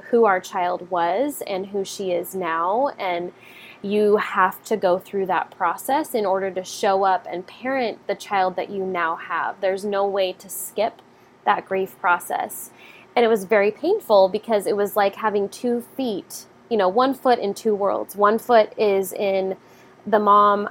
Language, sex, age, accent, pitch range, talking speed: English, female, 20-39, American, 190-225 Hz, 185 wpm